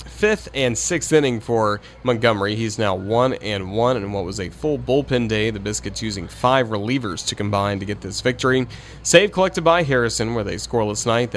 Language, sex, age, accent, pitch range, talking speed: English, male, 30-49, American, 105-140 Hz, 195 wpm